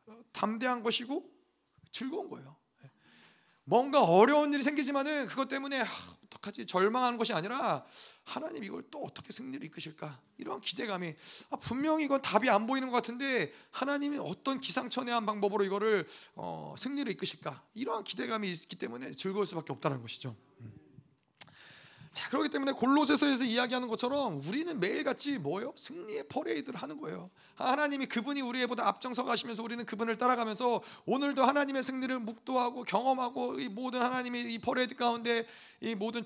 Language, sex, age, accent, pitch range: Korean, male, 30-49, native, 215-265 Hz